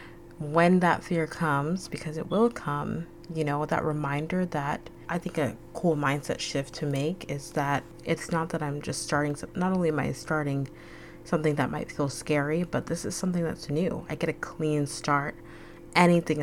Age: 30-49